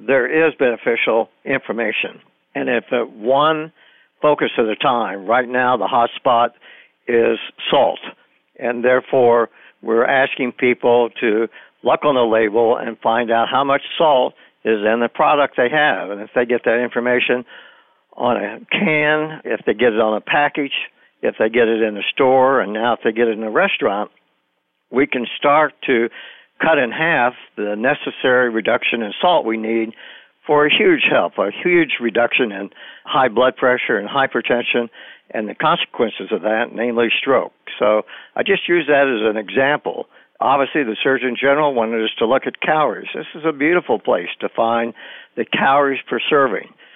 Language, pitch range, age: English, 115-140 Hz, 60-79